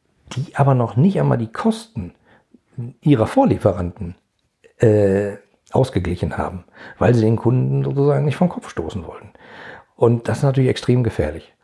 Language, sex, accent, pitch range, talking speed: German, male, German, 100-130 Hz, 145 wpm